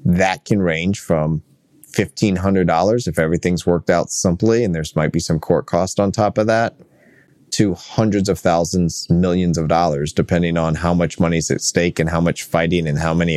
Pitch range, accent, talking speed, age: 80-95 Hz, American, 200 wpm, 30-49